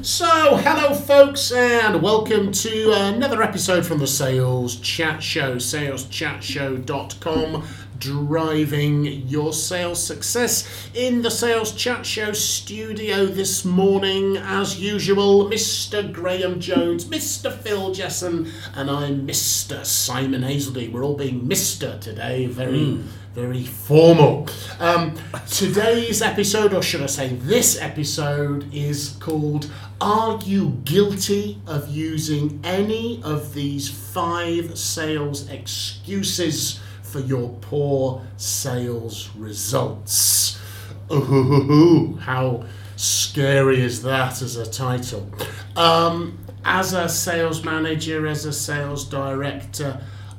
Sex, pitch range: male, 120-180 Hz